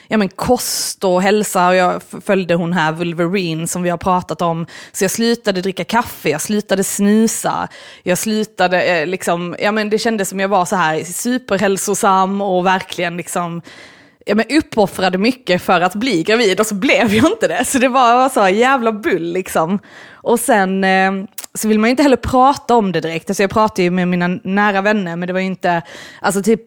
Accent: native